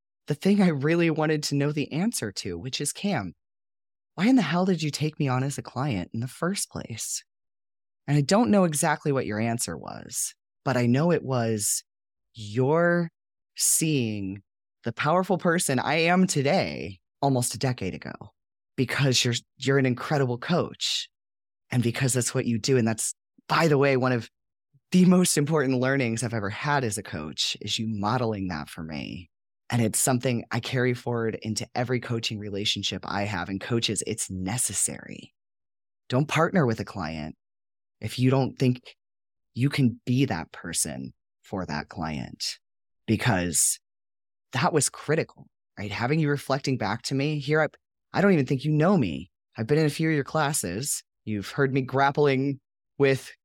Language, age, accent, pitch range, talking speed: English, 20-39, American, 105-145 Hz, 175 wpm